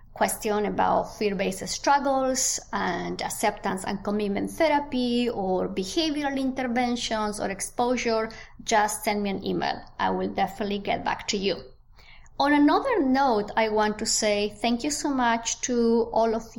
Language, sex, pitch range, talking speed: English, female, 210-260 Hz, 145 wpm